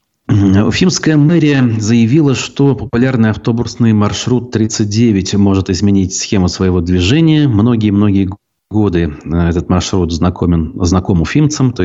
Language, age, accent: Russian, 30-49, native